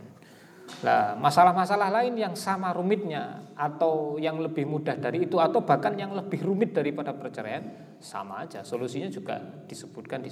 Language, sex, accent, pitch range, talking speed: Indonesian, male, native, 120-175 Hz, 145 wpm